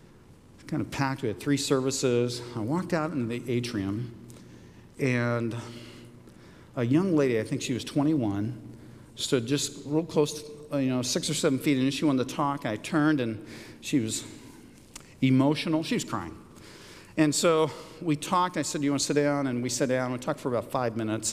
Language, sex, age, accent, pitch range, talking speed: English, male, 50-69, American, 120-160 Hz, 190 wpm